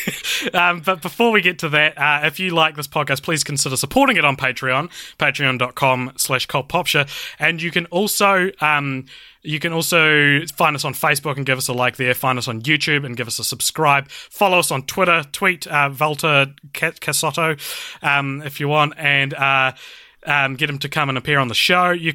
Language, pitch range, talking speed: English, 130-165 Hz, 200 wpm